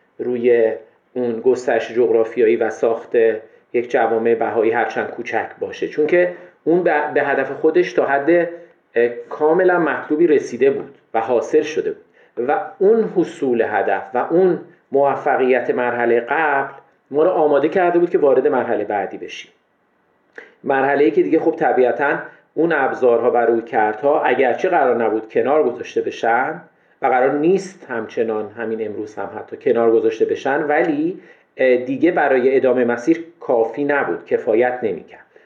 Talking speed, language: 140 wpm, Persian